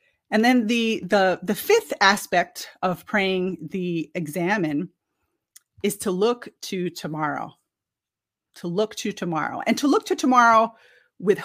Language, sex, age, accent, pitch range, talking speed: English, female, 30-49, American, 180-225 Hz, 135 wpm